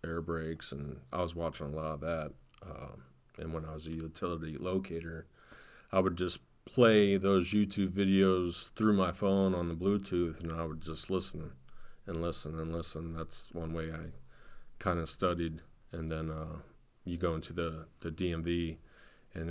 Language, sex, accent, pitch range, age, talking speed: English, male, American, 80-90 Hz, 30-49, 170 wpm